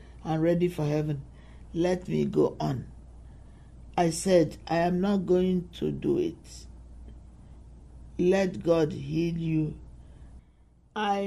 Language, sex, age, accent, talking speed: English, male, 50-69, Nigerian, 115 wpm